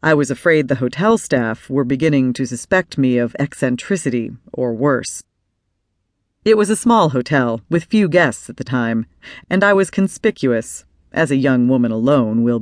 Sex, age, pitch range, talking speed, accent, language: female, 40-59, 110-165 Hz, 170 wpm, American, English